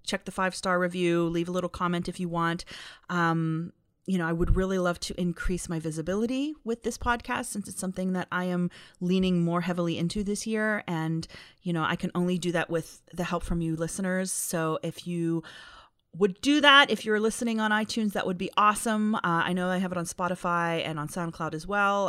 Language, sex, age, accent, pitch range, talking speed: English, female, 30-49, American, 165-195 Hz, 215 wpm